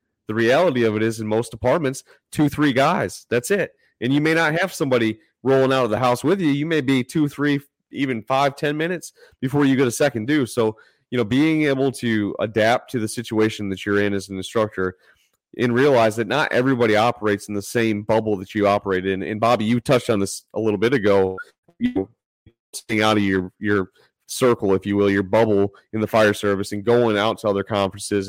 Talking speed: 220 wpm